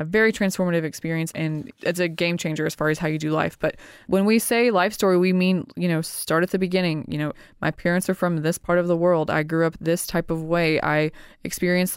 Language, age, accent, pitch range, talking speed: English, 20-39, American, 155-185 Hz, 250 wpm